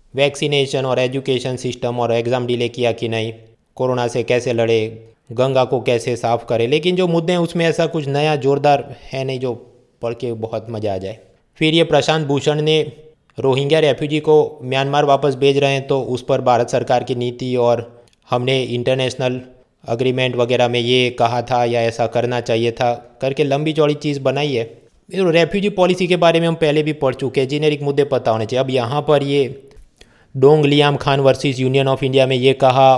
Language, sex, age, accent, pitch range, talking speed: Hindi, male, 20-39, native, 120-145 Hz, 195 wpm